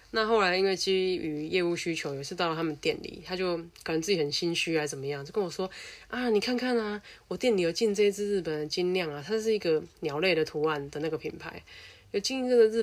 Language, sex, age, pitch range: Chinese, female, 20-39, 155-205 Hz